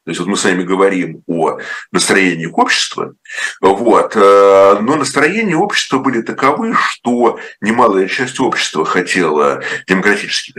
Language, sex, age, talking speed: Russian, male, 50-69, 125 wpm